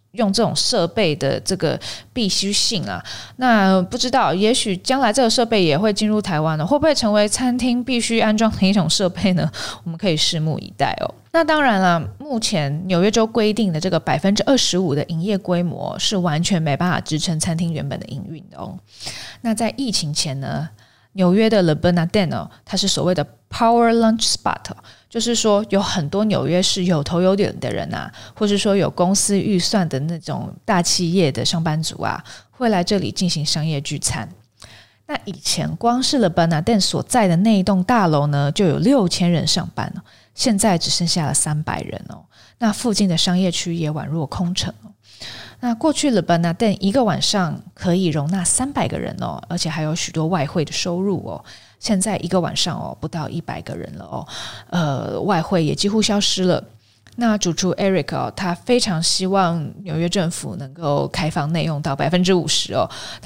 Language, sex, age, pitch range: Chinese, female, 20-39, 160-210 Hz